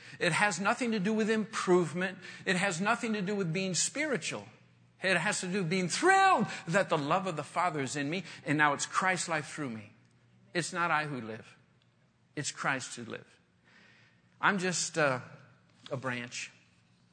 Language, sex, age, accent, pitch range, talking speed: English, male, 50-69, American, 125-180 Hz, 180 wpm